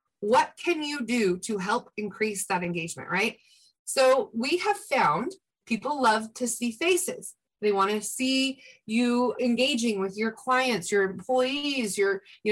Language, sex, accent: English, female, American